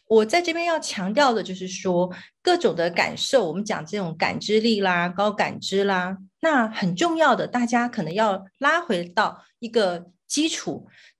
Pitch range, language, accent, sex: 195-280 Hz, Chinese, native, female